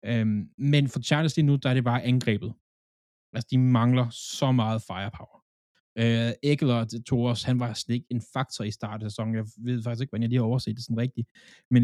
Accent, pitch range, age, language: native, 110-130 Hz, 20-39, Danish